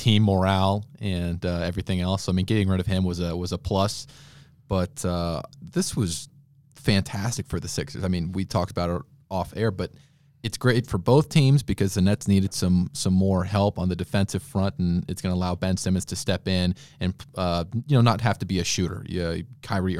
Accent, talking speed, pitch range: American, 220 wpm, 90-110 Hz